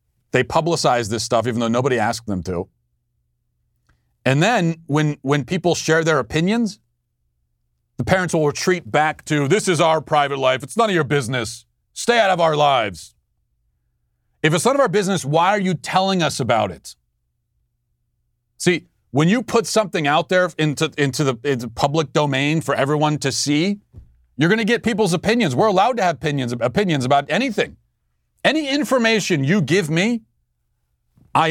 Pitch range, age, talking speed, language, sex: 105-170 Hz, 40-59, 170 wpm, English, male